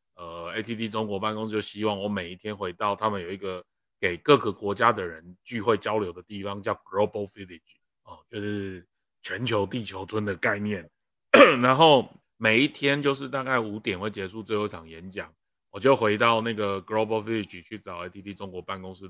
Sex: male